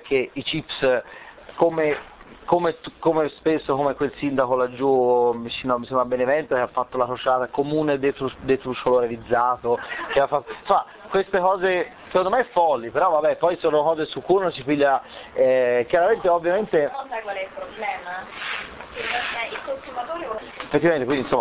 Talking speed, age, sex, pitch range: 135 wpm, 30-49, male, 125-155 Hz